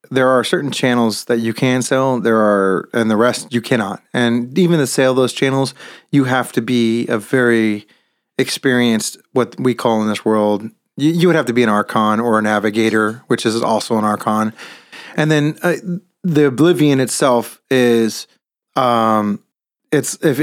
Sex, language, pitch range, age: male, English, 110-140 Hz, 30-49